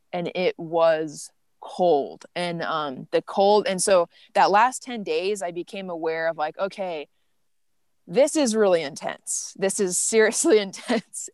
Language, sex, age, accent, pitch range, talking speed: English, female, 20-39, American, 170-210 Hz, 150 wpm